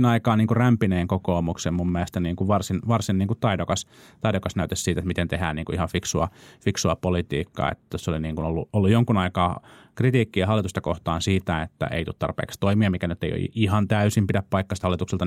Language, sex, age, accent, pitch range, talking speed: Finnish, male, 30-49, native, 85-105 Hz, 195 wpm